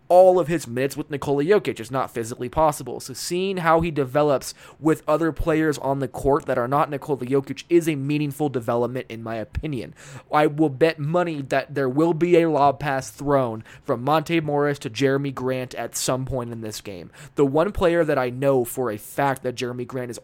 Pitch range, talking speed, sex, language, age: 130-165 Hz, 210 wpm, male, English, 20-39